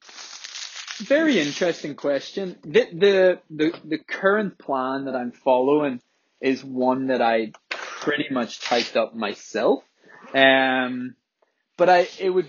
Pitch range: 115-165 Hz